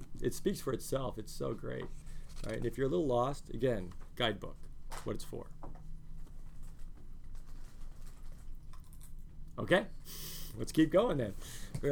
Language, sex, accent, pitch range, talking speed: English, male, American, 120-170 Hz, 130 wpm